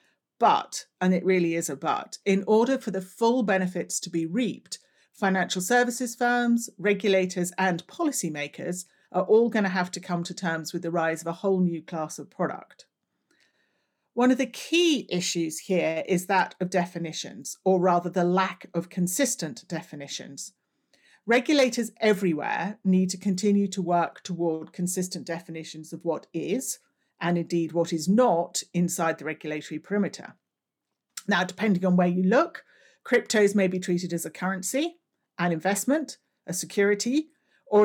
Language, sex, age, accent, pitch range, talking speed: English, female, 50-69, British, 175-215 Hz, 155 wpm